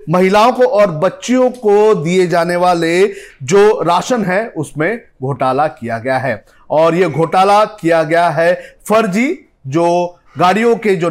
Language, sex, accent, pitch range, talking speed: Hindi, male, native, 160-205 Hz, 145 wpm